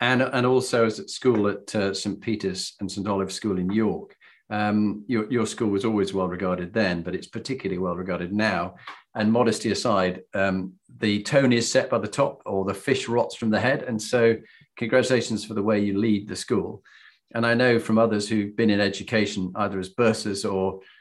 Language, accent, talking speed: English, British, 205 wpm